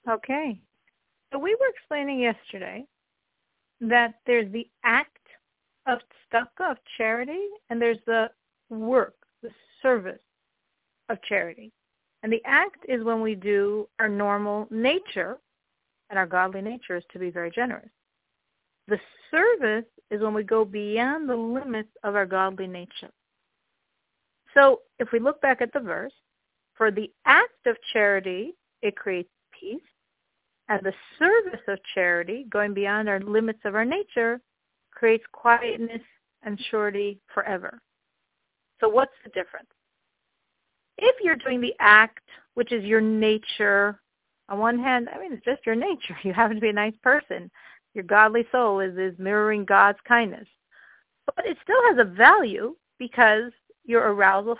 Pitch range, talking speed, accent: 210-255 Hz, 145 wpm, American